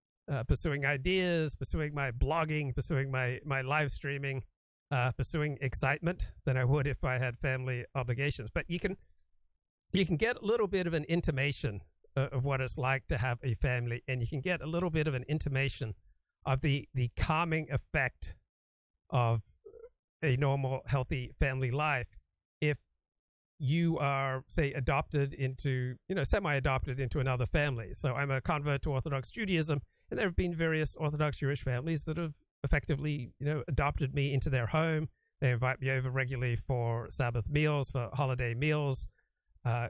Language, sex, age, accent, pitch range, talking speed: English, male, 60-79, American, 125-150 Hz, 170 wpm